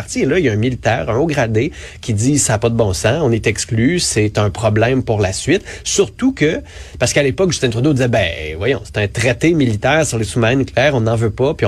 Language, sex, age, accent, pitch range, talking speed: French, male, 30-49, Canadian, 105-135 Hz, 265 wpm